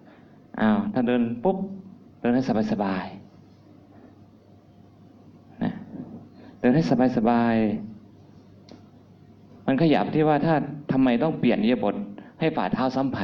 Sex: male